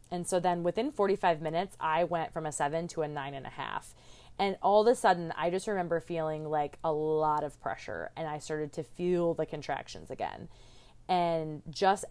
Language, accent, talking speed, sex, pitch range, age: English, American, 205 wpm, female, 155-190 Hz, 20-39